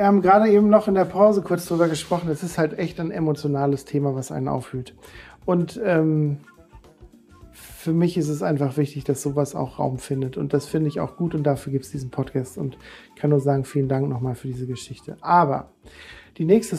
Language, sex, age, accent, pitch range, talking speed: German, male, 40-59, German, 165-205 Hz, 215 wpm